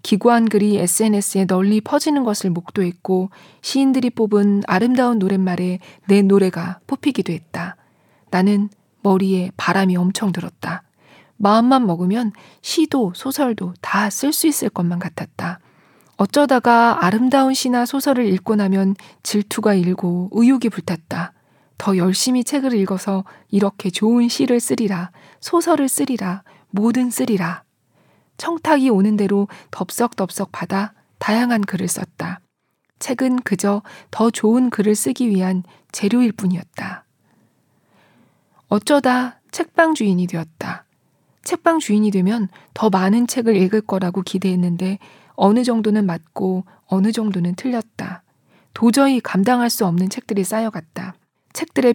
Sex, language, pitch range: female, Korean, 185-240 Hz